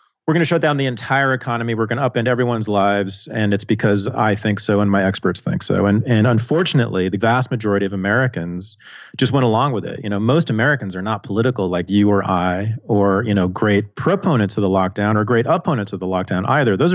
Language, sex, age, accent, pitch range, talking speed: English, male, 30-49, American, 100-135 Hz, 225 wpm